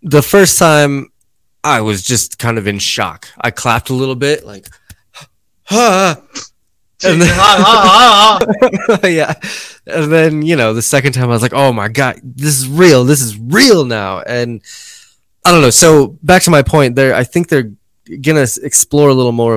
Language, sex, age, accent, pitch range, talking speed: English, male, 20-39, American, 95-135 Hz, 180 wpm